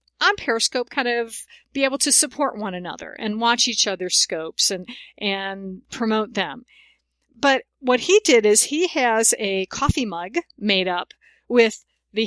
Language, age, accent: English, 50-69, American